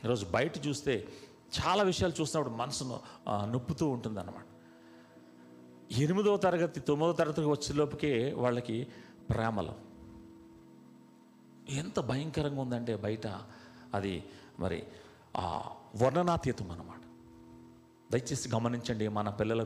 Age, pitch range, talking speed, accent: 40-59, 100-135 Hz, 90 wpm, native